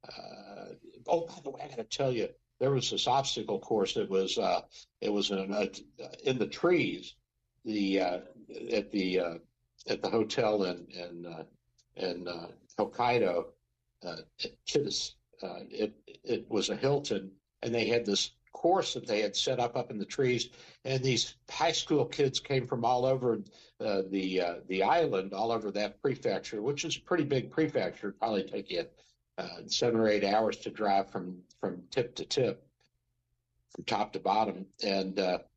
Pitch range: 95-120 Hz